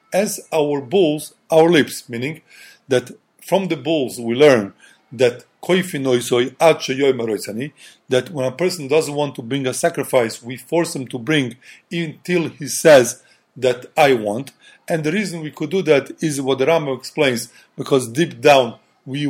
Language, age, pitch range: English, 40-59, 135-170 Hz